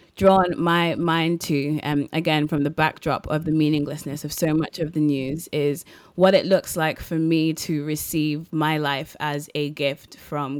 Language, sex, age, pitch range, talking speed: English, female, 20-39, 145-155 Hz, 185 wpm